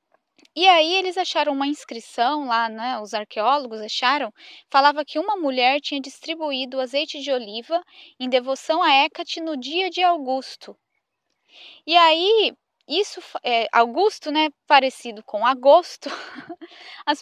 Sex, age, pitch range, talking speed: female, 10-29, 260-330 Hz, 130 wpm